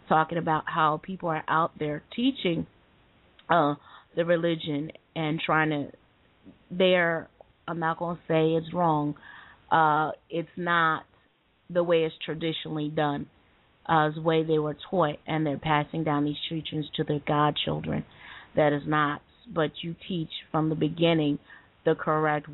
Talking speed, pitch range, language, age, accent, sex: 150 wpm, 150-165 Hz, English, 30-49, American, female